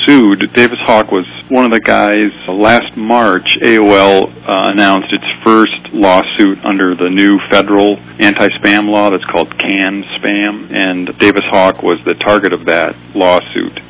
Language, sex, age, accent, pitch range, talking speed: English, male, 40-59, American, 90-110 Hz, 145 wpm